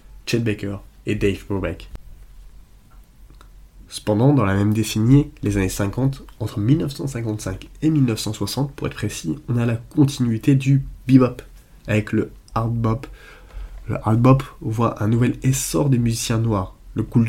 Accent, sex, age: French, male, 20-39